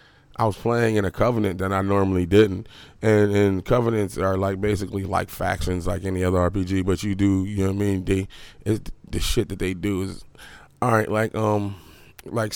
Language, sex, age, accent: English, male, 20-39, American